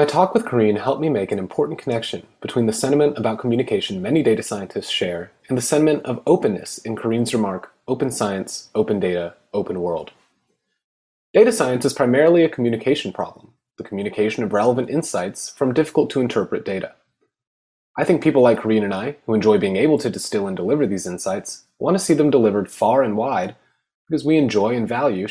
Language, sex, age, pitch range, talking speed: English, male, 30-49, 105-145 Hz, 190 wpm